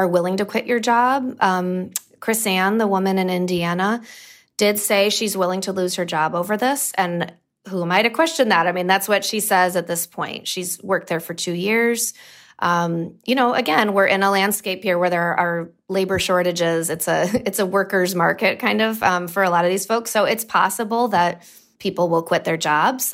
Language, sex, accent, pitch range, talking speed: English, female, American, 170-205 Hz, 215 wpm